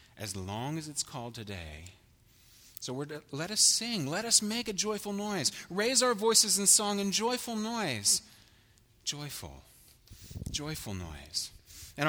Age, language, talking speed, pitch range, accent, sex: 30-49, English, 150 wpm, 105-150 Hz, American, male